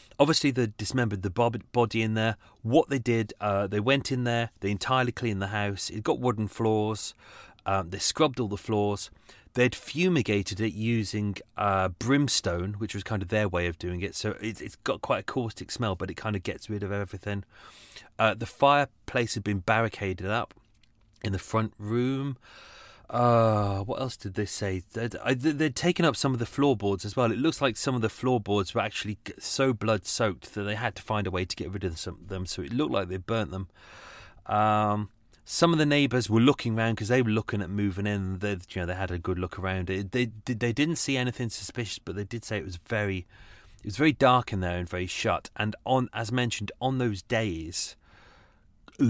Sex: male